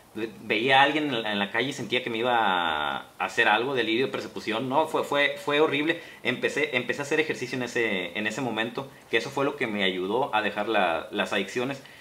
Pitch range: 115-160 Hz